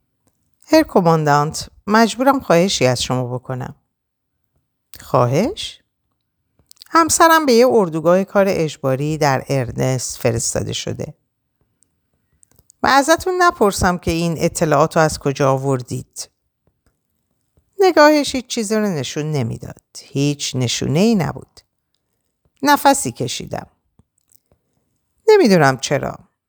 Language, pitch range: Persian, 135-220 Hz